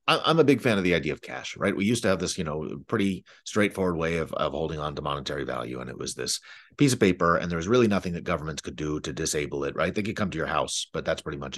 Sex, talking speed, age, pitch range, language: male, 295 wpm, 30-49, 85-110 Hz, English